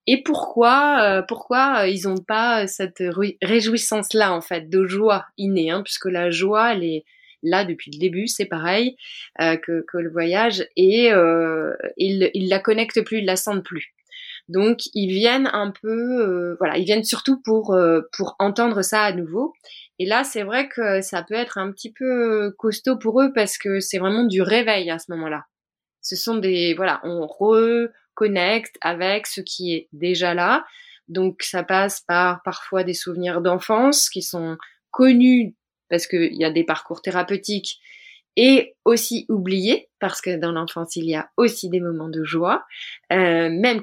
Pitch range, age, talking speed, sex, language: 175-230 Hz, 20-39, 180 wpm, female, French